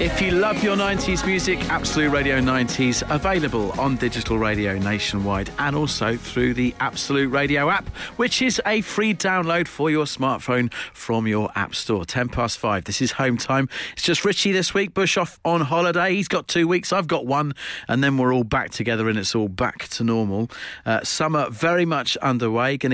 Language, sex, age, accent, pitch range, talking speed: English, male, 40-59, British, 120-170 Hz, 195 wpm